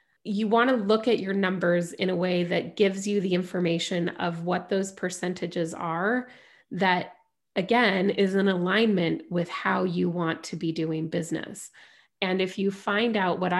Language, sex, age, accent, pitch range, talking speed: English, female, 20-39, American, 175-205 Hz, 170 wpm